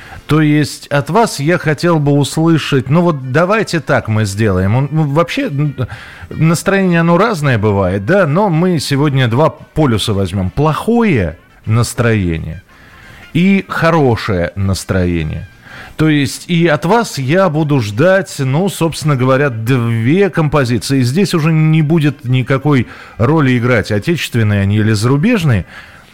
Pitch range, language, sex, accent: 110-160 Hz, Russian, male, native